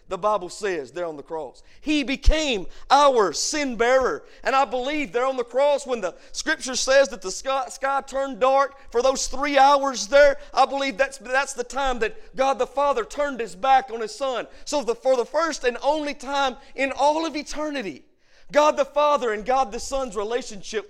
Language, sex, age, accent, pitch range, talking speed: English, male, 40-59, American, 195-275 Hz, 200 wpm